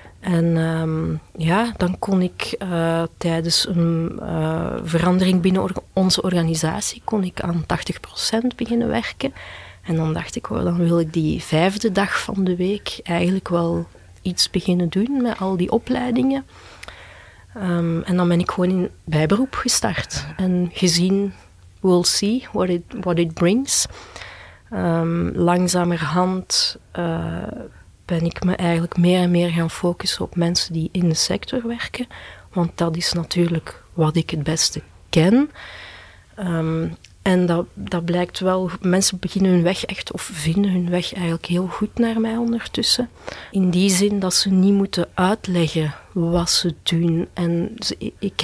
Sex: female